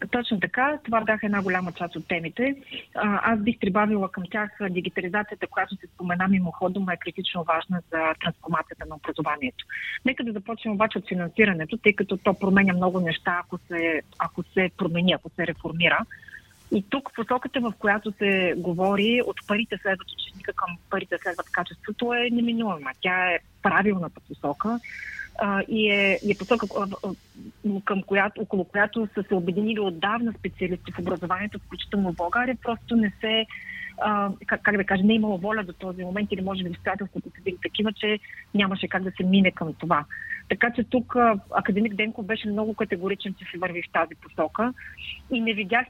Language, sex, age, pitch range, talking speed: Bulgarian, female, 40-59, 180-220 Hz, 180 wpm